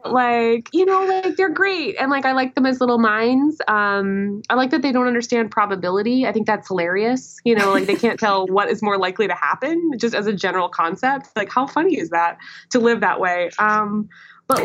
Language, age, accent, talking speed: English, 20-39, American, 220 wpm